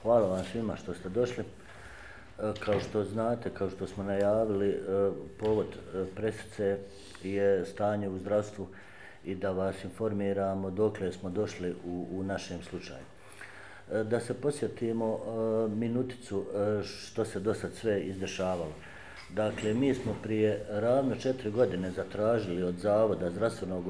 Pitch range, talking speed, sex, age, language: 95-115 Hz, 130 wpm, male, 50-69, Croatian